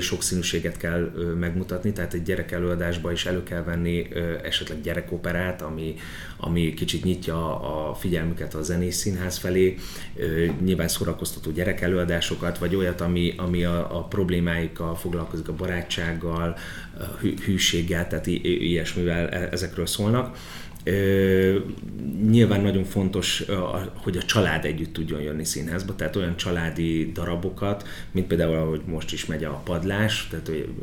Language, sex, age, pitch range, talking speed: Hungarian, male, 30-49, 85-95 Hz, 130 wpm